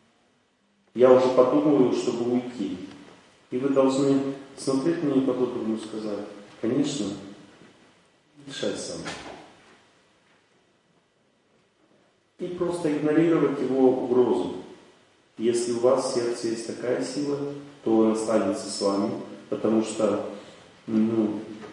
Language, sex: Russian, male